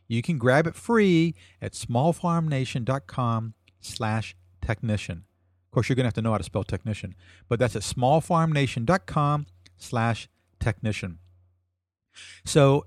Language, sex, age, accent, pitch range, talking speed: English, male, 50-69, American, 95-140 Hz, 120 wpm